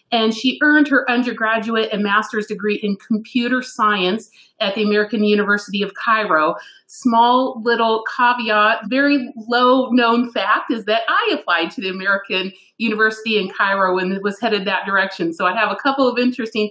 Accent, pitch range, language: American, 195-240 Hz, English